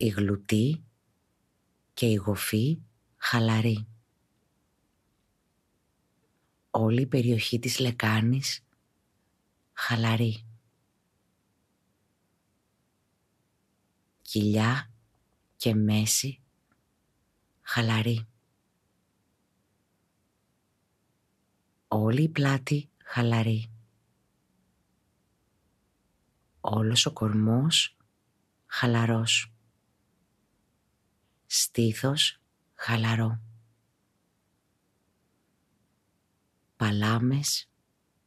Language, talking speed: Greek, 40 wpm